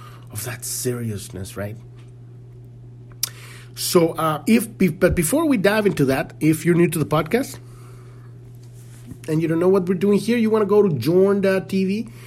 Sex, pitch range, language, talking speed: male, 120-155 Hz, English, 155 wpm